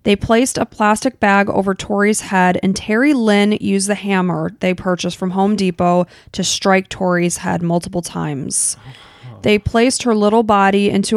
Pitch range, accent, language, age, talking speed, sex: 180-205 Hz, American, English, 20-39, 165 wpm, female